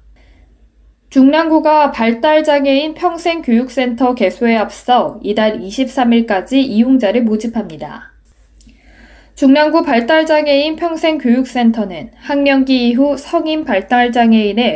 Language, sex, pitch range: Korean, female, 220-280 Hz